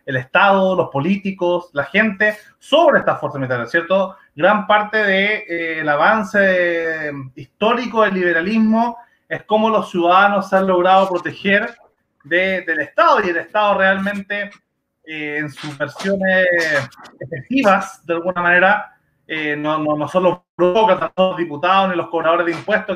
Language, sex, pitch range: Spanish, male, 150-195 Hz